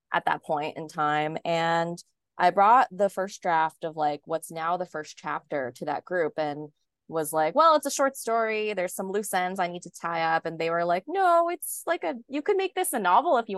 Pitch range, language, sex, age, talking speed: 155-215 Hz, English, female, 20-39, 240 wpm